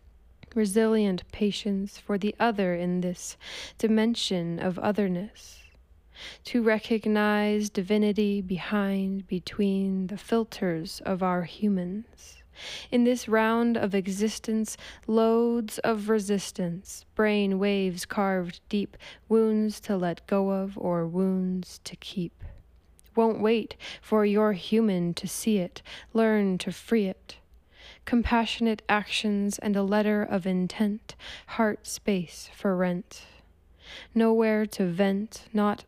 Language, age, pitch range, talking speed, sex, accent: English, 10-29, 185-215 Hz, 115 wpm, female, American